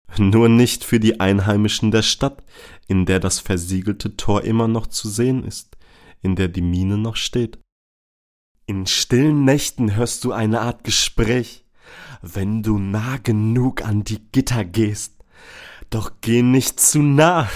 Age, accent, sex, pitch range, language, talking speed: 30-49, German, male, 95-120 Hz, German, 150 wpm